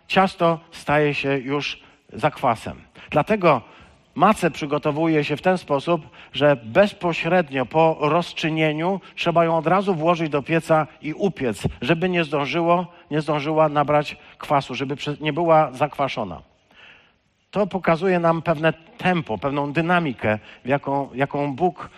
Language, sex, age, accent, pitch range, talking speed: Polish, male, 50-69, native, 145-170 Hz, 125 wpm